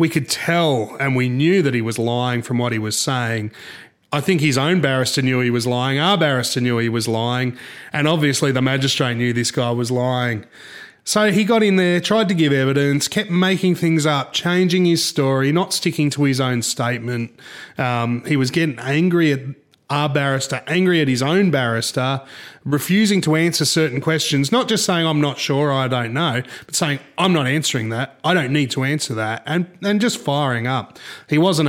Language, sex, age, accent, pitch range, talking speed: English, male, 30-49, Australian, 125-160 Hz, 205 wpm